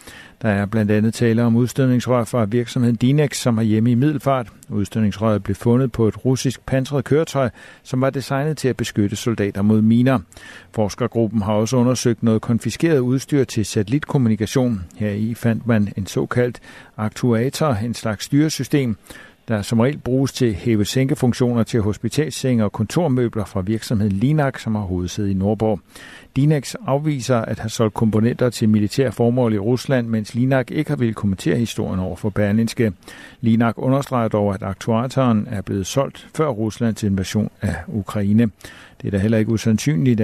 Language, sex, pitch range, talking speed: Danish, male, 105-130 Hz, 160 wpm